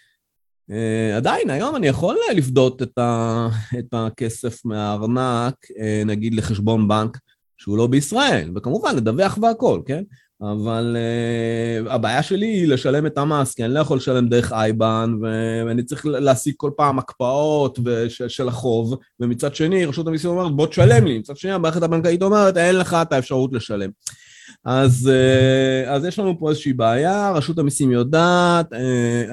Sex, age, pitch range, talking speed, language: male, 30-49, 120-175 Hz, 150 wpm, Hebrew